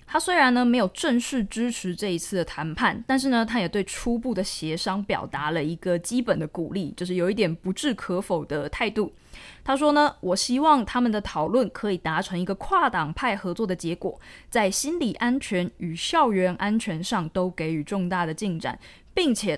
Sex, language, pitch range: female, Chinese, 180-235 Hz